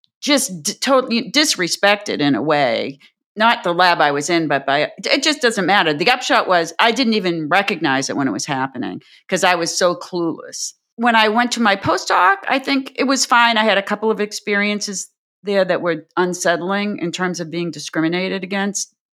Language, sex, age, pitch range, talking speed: English, female, 40-59, 155-205 Hz, 200 wpm